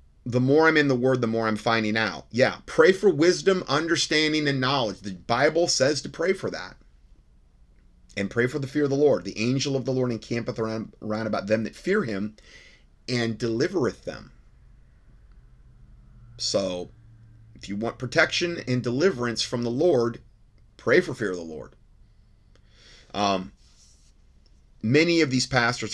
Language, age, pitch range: English, 30-49, 100-135 Hz